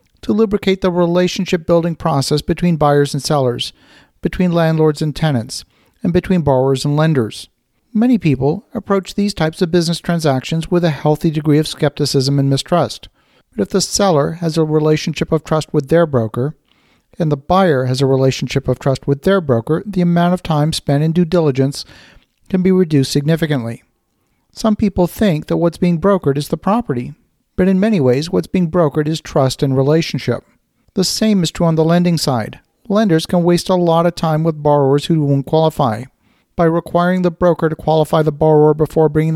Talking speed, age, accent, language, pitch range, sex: 185 wpm, 50-69, American, English, 145-175 Hz, male